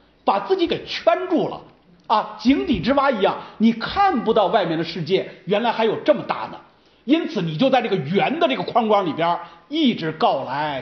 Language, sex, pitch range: Chinese, male, 195-275 Hz